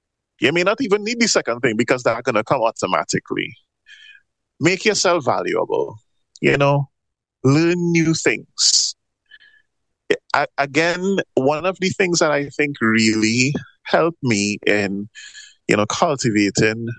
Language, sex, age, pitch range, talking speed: English, male, 20-39, 110-165 Hz, 130 wpm